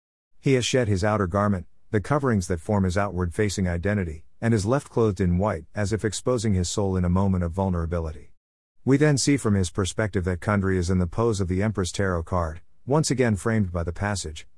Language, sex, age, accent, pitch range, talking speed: English, male, 50-69, American, 85-115 Hz, 215 wpm